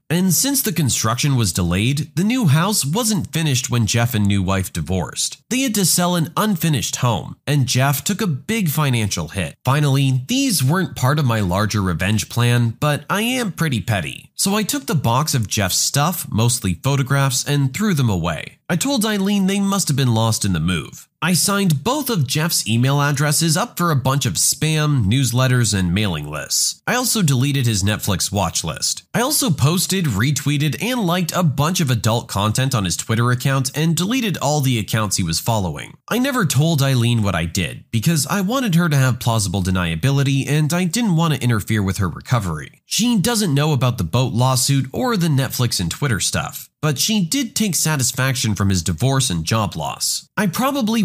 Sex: male